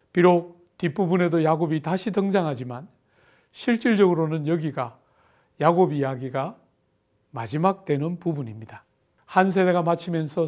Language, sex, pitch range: Korean, male, 145-190 Hz